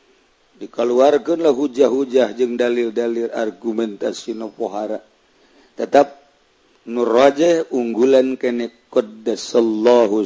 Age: 50-69